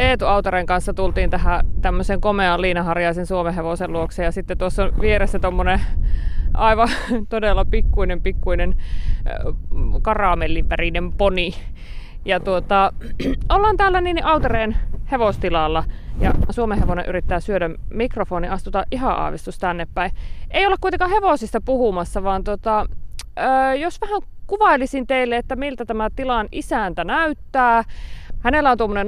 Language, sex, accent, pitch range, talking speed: Finnish, female, native, 170-235 Hz, 120 wpm